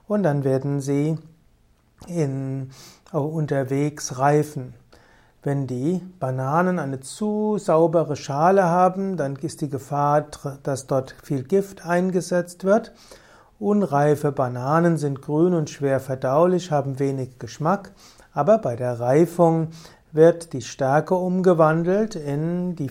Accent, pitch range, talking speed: German, 135-170 Hz, 120 wpm